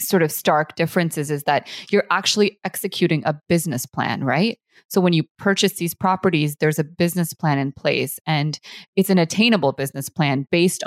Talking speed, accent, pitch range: 175 wpm, American, 155-185 Hz